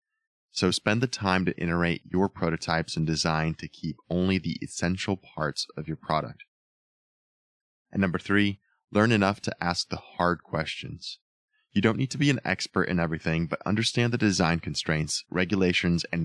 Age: 20-39